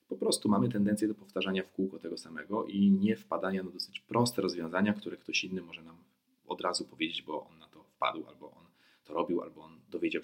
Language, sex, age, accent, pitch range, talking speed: Polish, male, 40-59, native, 95-120 Hz, 215 wpm